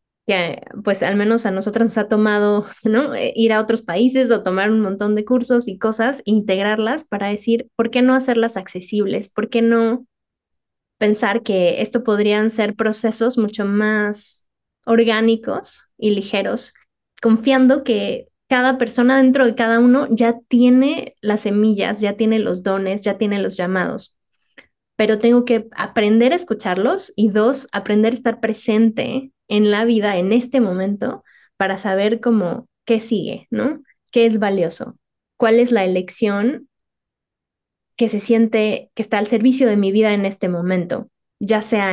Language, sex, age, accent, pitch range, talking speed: Spanish, female, 20-39, Mexican, 205-240 Hz, 155 wpm